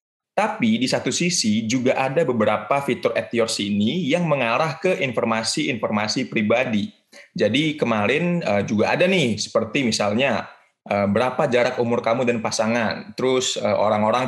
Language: Indonesian